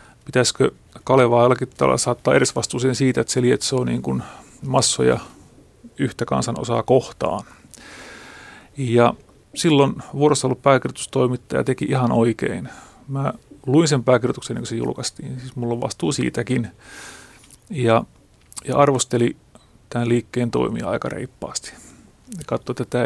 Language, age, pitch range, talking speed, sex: Finnish, 30-49, 120-140 Hz, 120 wpm, male